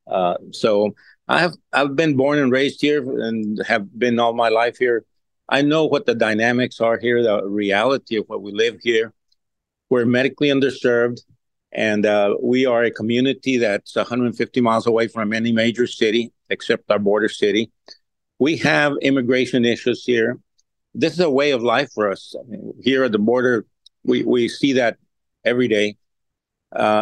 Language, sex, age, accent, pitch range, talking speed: English, male, 50-69, American, 110-130 Hz, 170 wpm